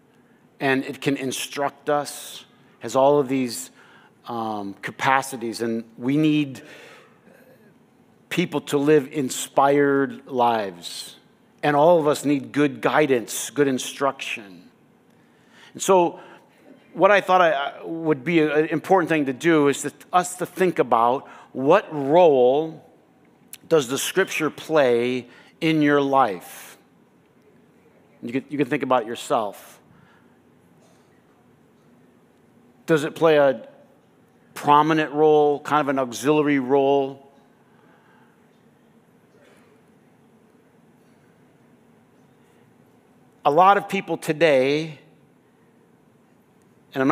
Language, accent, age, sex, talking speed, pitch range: English, American, 50-69, male, 105 wpm, 130-155 Hz